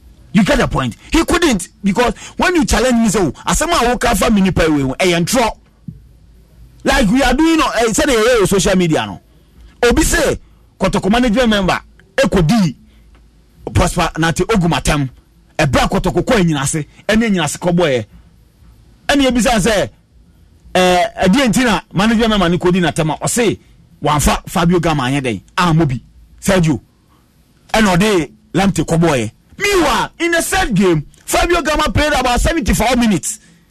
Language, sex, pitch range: English, male, 165-245 Hz